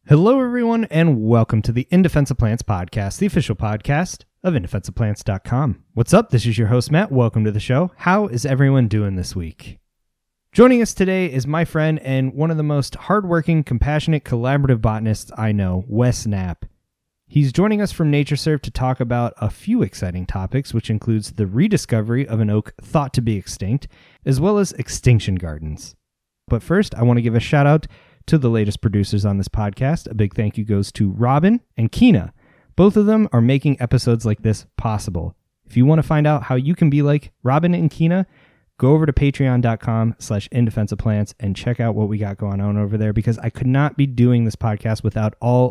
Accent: American